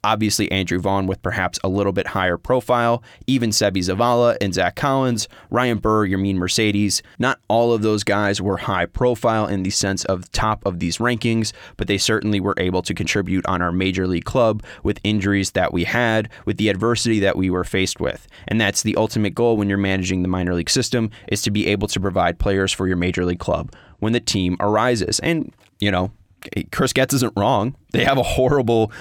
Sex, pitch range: male, 95-110 Hz